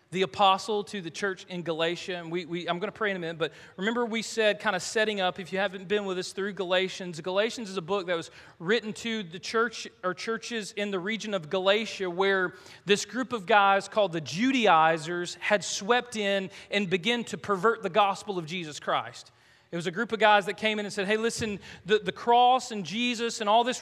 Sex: male